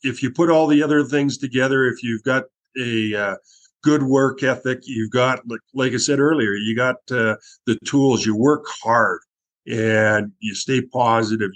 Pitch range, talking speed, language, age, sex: 110-130 Hz, 180 wpm, English, 50-69, male